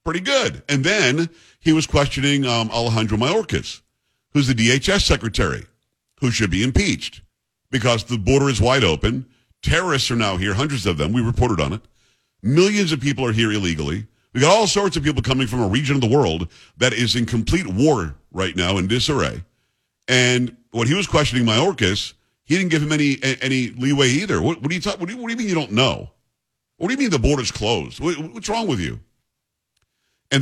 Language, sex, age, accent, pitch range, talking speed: English, male, 50-69, American, 110-145 Hz, 205 wpm